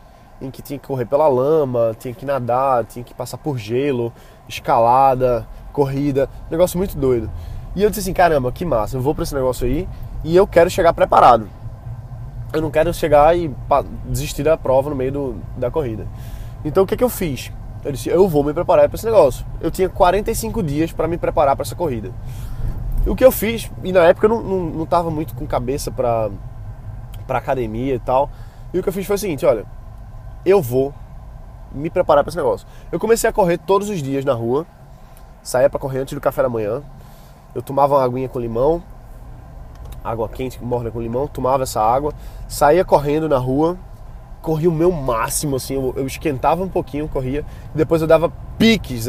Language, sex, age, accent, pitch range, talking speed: Portuguese, male, 20-39, Brazilian, 120-170 Hz, 200 wpm